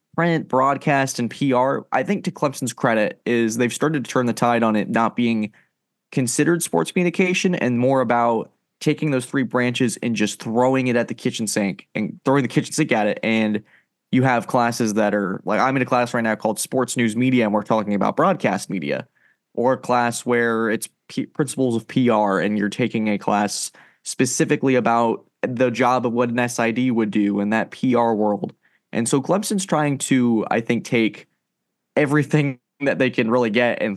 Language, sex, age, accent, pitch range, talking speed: English, male, 20-39, American, 110-135 Hz, 195 wpm